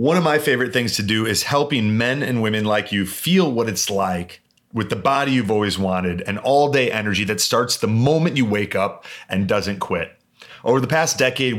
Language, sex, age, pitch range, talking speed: English, male, 30-49, 105-130 Hz, 220 wpm